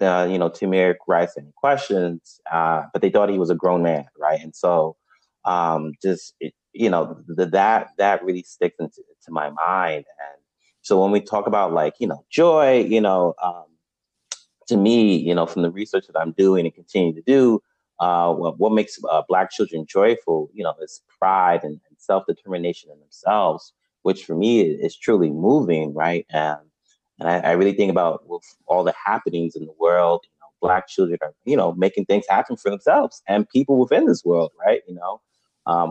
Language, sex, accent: English, male, American